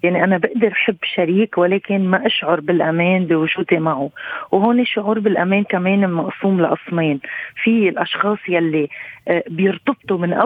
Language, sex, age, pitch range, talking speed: Arabic, female, 30-49, 175-205 Hz, 125 wpm